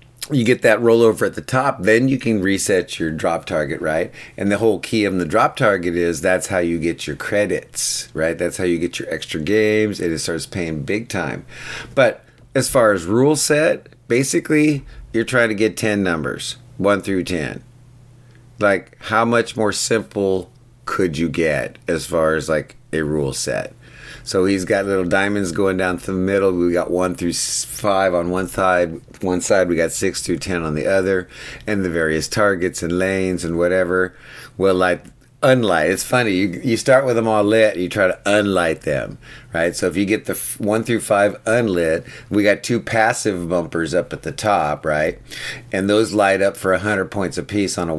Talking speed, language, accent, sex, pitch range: 200 wpm, English, American, male, 85-110 Hz